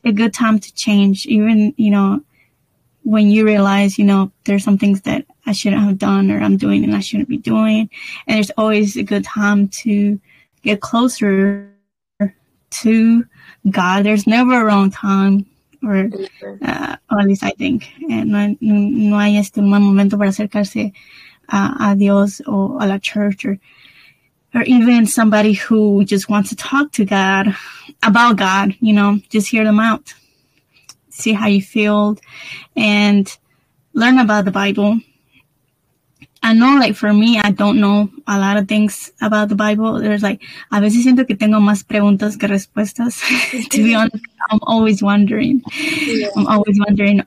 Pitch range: 200-225 Hz